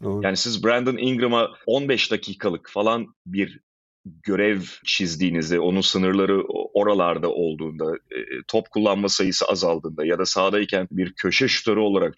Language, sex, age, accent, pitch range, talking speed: Turkish, male, 40-59, native, 95-120 Hz, 125 wpm